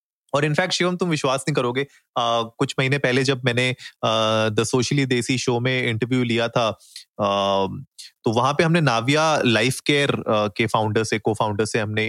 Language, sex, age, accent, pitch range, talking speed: Hindi, male, 30-49, native, 115-145 Hz, 175 wpm